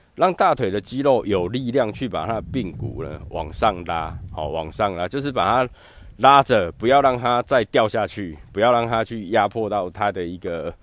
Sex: male